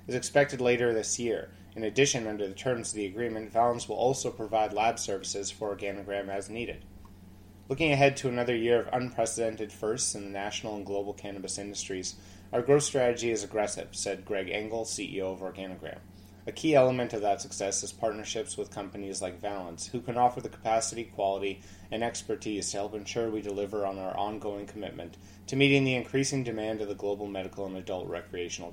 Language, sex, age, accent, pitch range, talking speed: English, male, 30-49, American, 100-120 Hz, 190 wpm